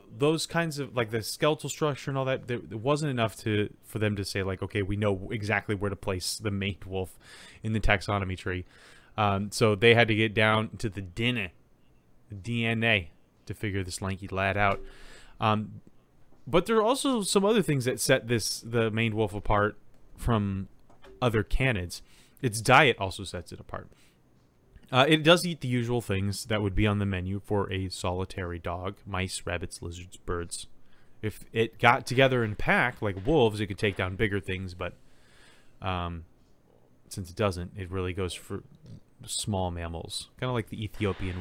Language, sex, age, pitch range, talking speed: English, male, 20-39, 95-120 Hz, 185 wpm